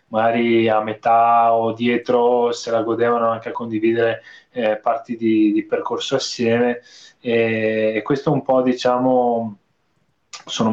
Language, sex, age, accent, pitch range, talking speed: Italian, male, 20-39, native, 115-130 Hz, 140 wpm